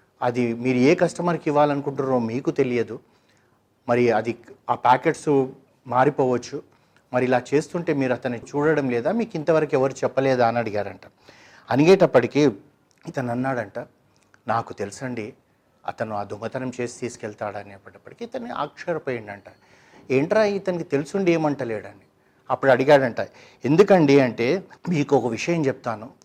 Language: Telugu